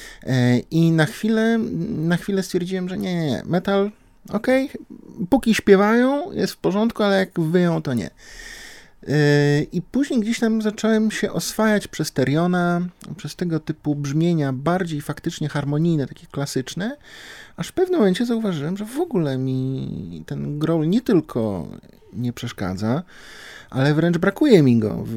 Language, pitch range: Polish, 135-195 Hz